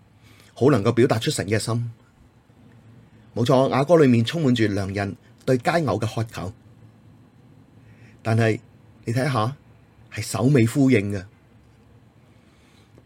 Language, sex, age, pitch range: Chinese, male, 30-49, 110-120 Hz